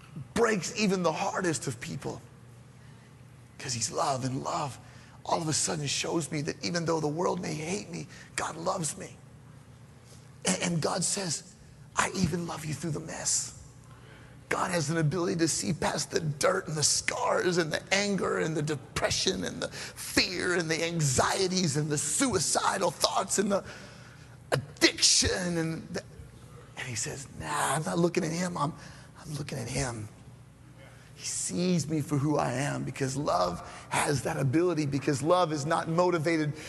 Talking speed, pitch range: 170 wpm, 140-180 Hz